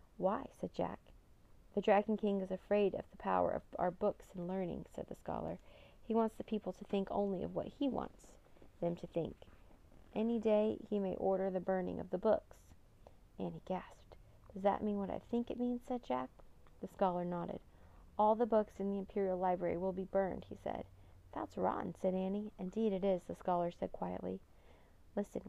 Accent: American